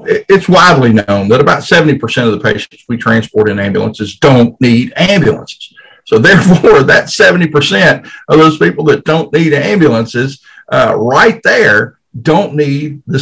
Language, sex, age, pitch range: English, male, 50-69, 120-155 Hz